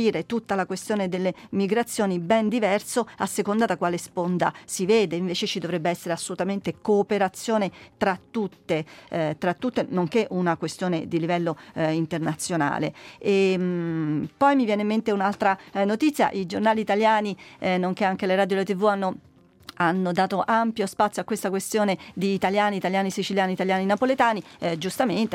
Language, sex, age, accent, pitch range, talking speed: Italian, female, 40-59, native, 185-215 Hz, 150 wpm